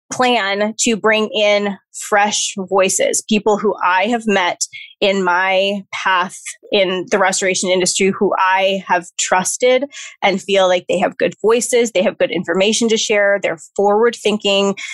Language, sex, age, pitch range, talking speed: English, female, 20-39, 195-230 Hz, 155 wpm